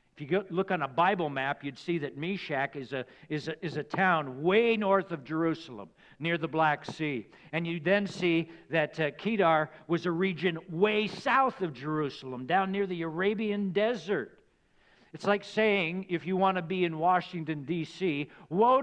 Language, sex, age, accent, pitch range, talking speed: English, male, 60-79, American, 145-185 Hz, 180 wpm